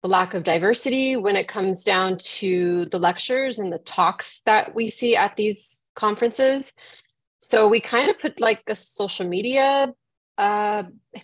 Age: 20-39